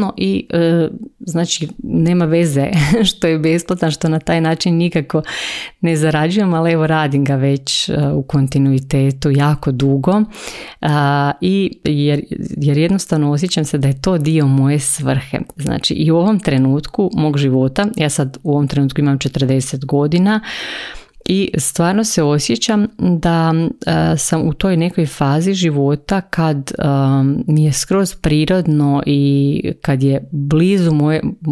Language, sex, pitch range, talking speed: Croatian, female, 140-160 Hz, 135 wpm